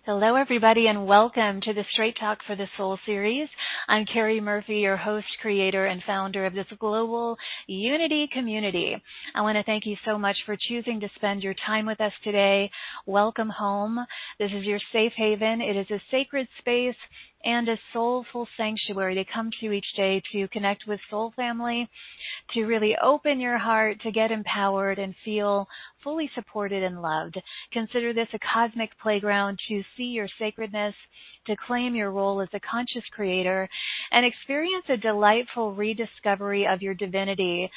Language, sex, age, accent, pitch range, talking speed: English, female, 40-59, American, 200-230 Hz, 170 wpm